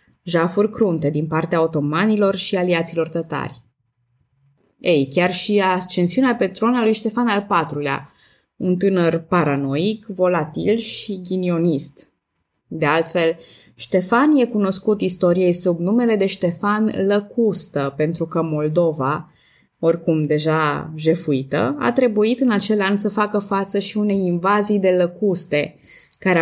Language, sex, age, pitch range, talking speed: Romanian, female, 20-39, 150-195 Hz, 125 wpm